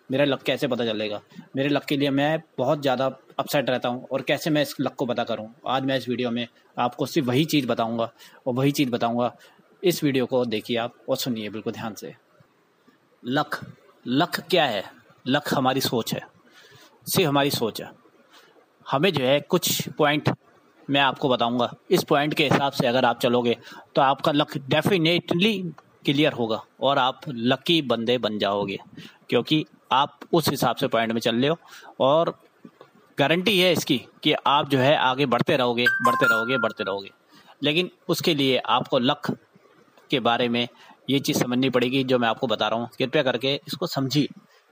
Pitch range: 125-165 Hz